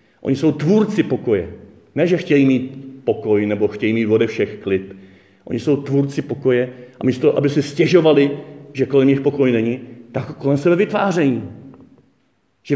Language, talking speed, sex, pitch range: Czech, 160 wpm, male, 110-140 Hz